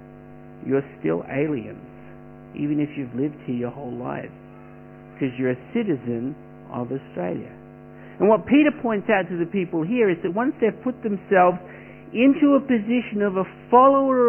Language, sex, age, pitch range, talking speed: English, male, 60-79, 145-225 Hz, 160 wpm